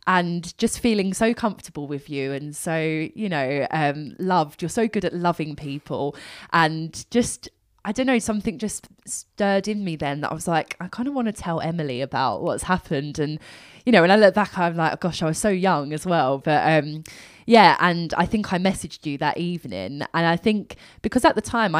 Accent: British